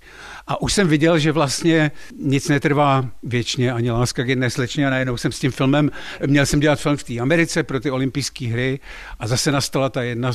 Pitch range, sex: 120-140 Hz, male